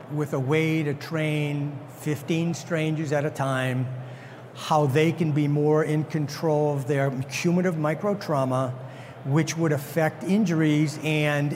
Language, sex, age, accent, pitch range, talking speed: English, male, 60-79, American, 150-180 Hz, 135 wpm